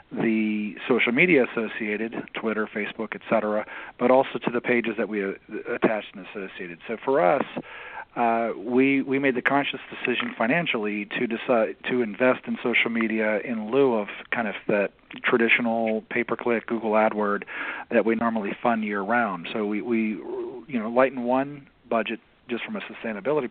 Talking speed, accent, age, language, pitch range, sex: 155 wpm, American, 40-59, English, 105-120 Hz, male